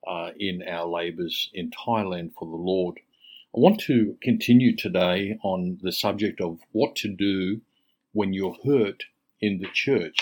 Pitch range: 90-110 Hz